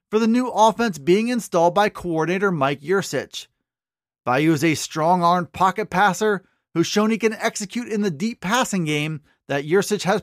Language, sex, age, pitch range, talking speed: English, male, 30-49, 170-225 Hz, 170 wpm